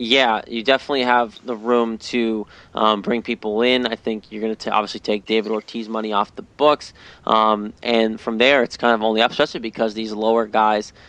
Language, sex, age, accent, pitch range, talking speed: English, male, 20-39, American, 105-120 Hz, 210 wpm